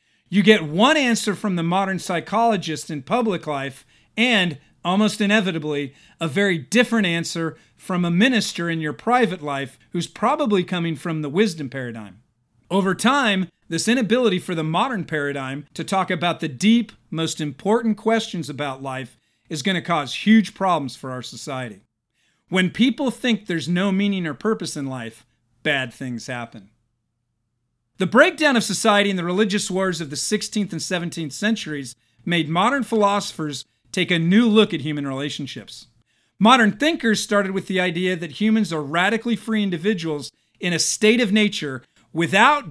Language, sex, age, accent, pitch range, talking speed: English, male, 40-59, American, 145-210 Hz, 160 wpm